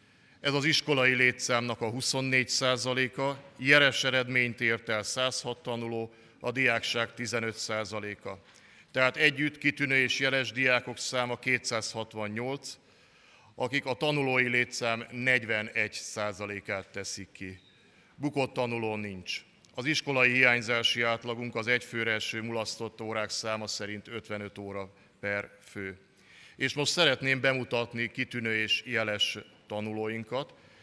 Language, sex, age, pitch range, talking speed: Hungarian, male, 50-69, 110-130 Hz, 115 wpm